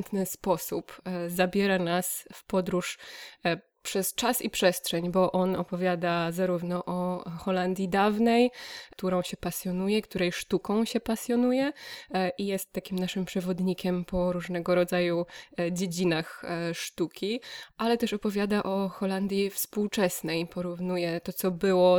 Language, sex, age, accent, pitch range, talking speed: Polish, female, 20-39, native, 180-205 Hz, 115 wpm